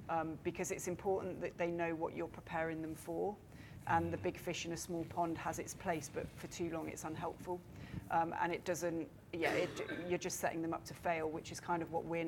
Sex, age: female, 30-49